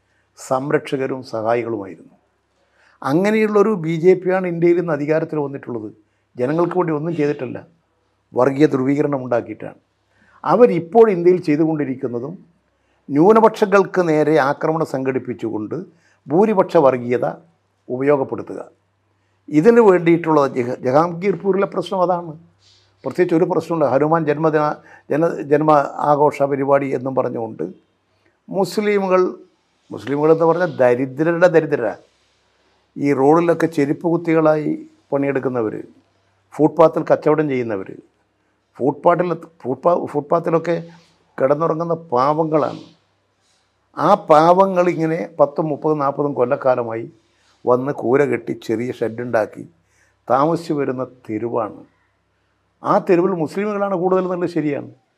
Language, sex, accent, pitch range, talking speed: Malayalam, male, native, 130-175 Hz, 85 wpm